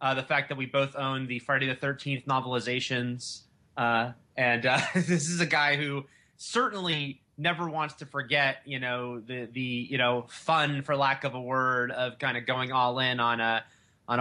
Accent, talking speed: American, 195 wpm